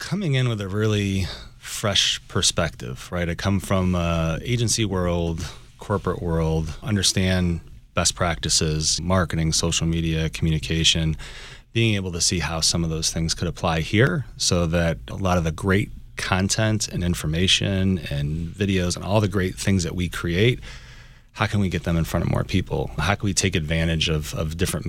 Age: 30-49